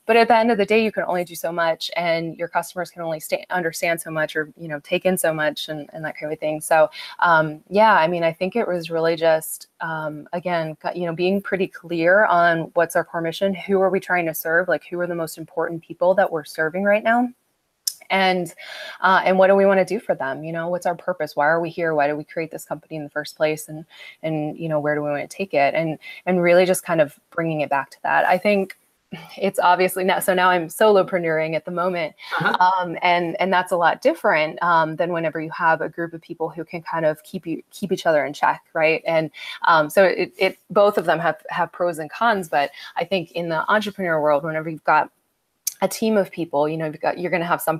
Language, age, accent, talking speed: English, 20-39, American, 255 wpm